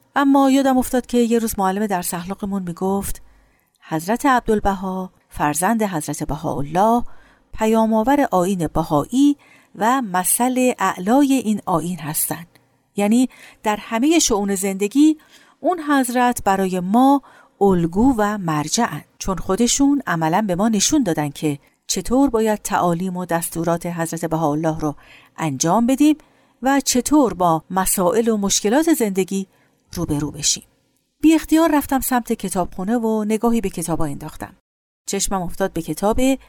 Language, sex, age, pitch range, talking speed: Persian, female, 50-69, 175-255 Hz, 125 wpm